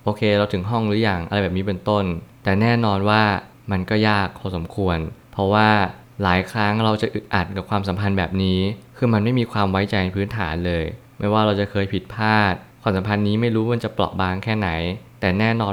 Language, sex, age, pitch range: Thai, male, 20-39, 95-115 Hz